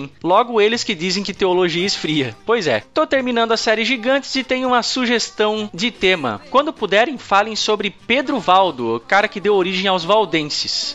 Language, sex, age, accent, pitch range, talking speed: Portuguese, male, 20-39, Brazilian, 185-245 Hz, 180 wpm